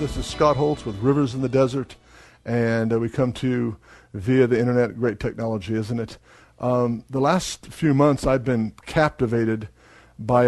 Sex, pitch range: male, 115-145 Hz